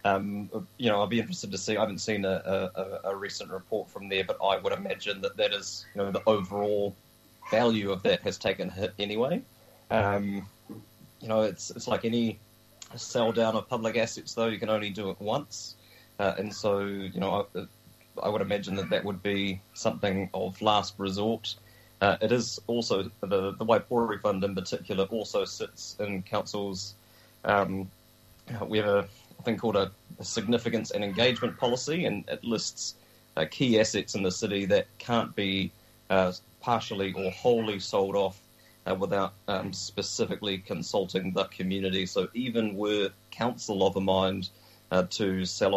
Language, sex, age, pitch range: English, male, 30-49, 95-110 Hz